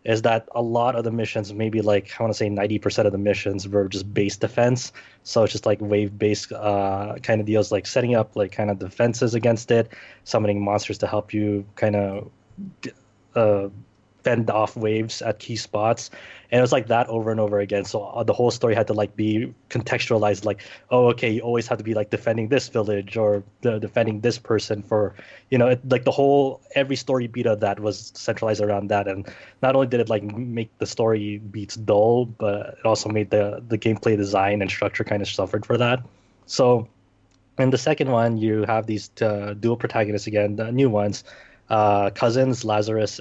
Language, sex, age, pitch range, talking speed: English, male, 20-39, 105-120 Hz, 200 wpm